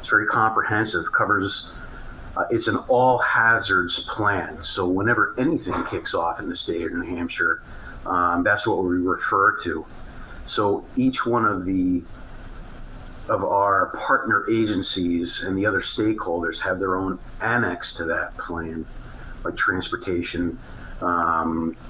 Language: English